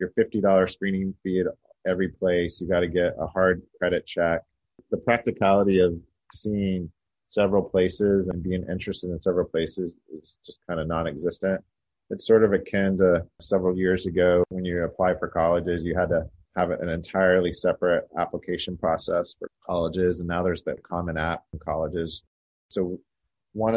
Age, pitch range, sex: 30-49, 85-95 Hz, male